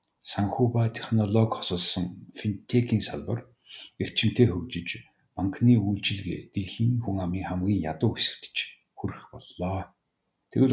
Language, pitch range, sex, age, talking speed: English, 95-115 Hz, male, 50-69, 105 wpm